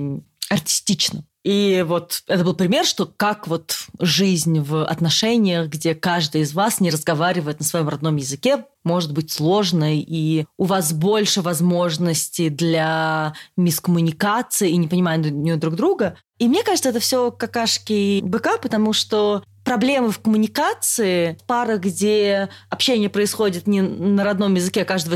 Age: 20-39